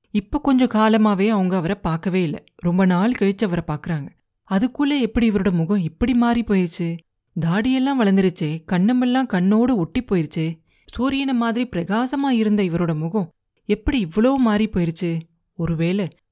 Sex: female